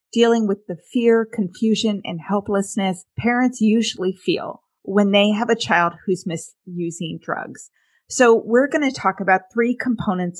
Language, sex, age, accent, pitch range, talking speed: English, female, 30-49, American, 185-225 Hz, 150 wpm